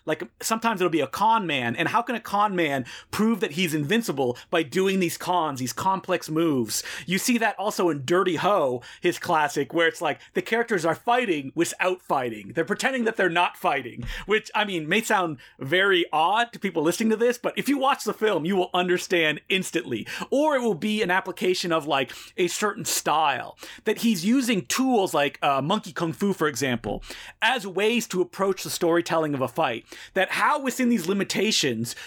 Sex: male